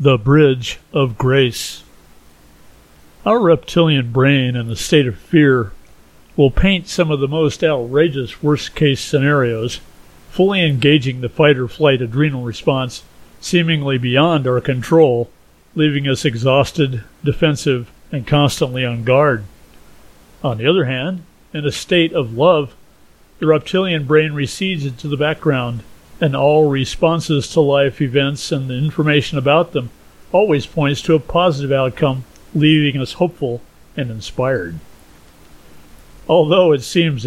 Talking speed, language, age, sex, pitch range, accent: 130 wpm, English, 50-69, male, 120-155 Hz, American